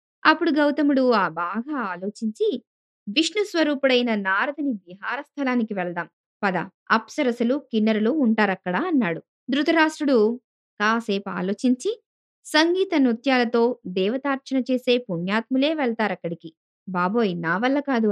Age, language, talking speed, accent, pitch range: 20-39, Telugu, 95 wpm, native, 205-285 Hz